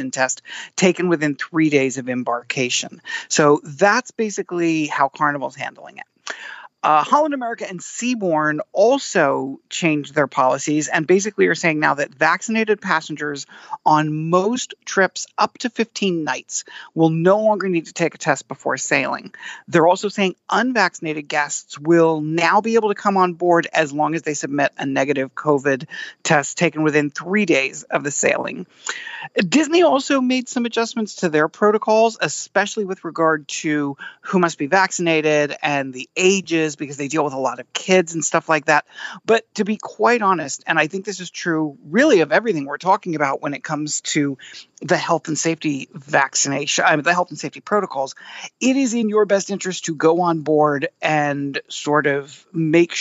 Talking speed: 175 wpm